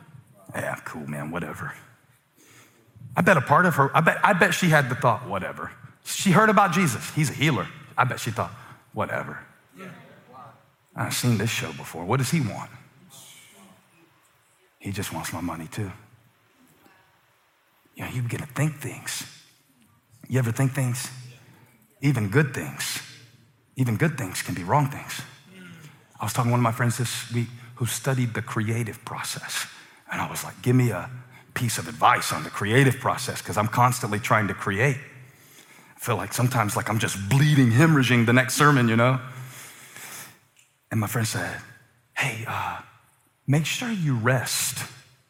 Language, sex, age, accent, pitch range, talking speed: English, male, 40-59, American, 115-140 Hz, 170 wpm